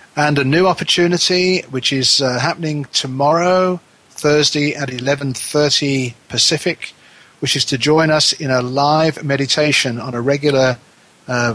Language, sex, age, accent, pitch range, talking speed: English, male, 40-59, British, 125-150 Hz, 135 wpm